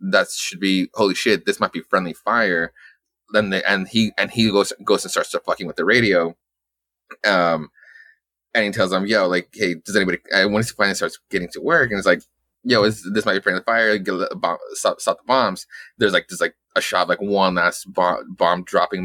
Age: 20-39